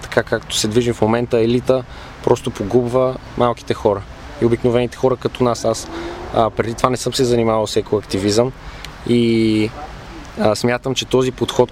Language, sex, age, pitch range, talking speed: Bulgarian, male, 20-39, 110-125 Hz, 165 wpm